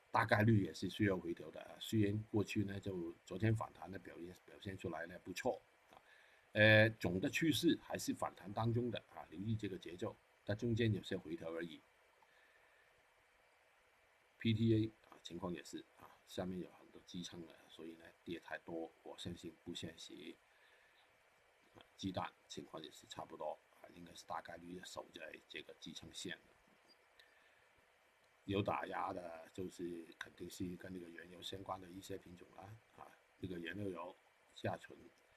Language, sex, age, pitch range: Chinese, male, 50-69, 90-110 Hz